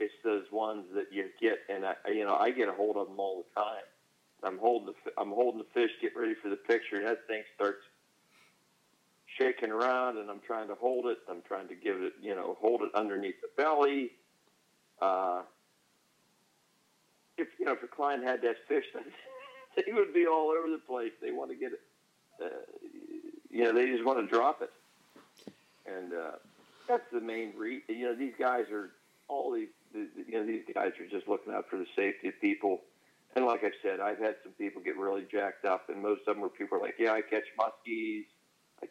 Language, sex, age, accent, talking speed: English, male, 50-69, American, 210 wpm